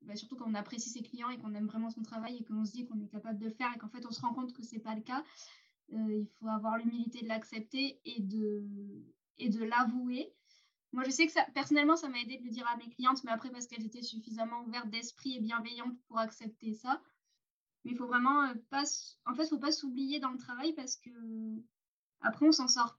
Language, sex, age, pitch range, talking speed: French, female, 10-29, 230-265 Hz, 250 wpm